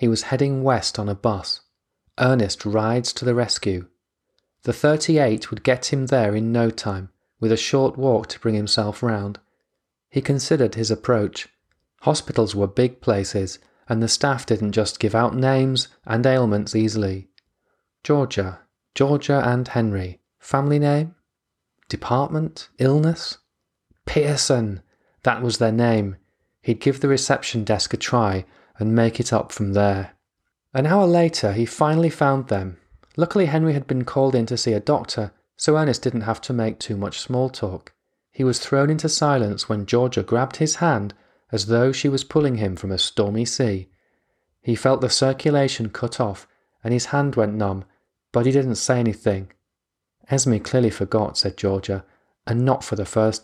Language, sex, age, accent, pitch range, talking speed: English, male, 30-49, British, 105-135 Hz, 165 wpm